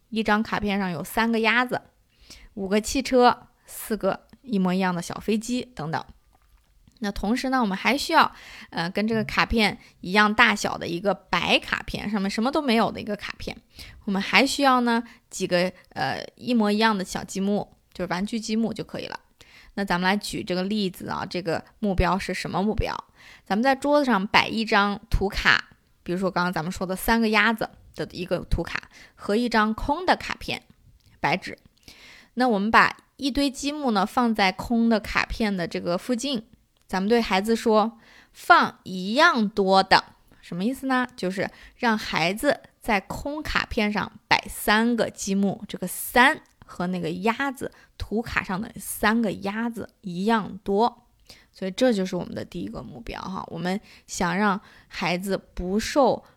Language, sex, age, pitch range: Chinese, female, 20-39, 190-235 Hz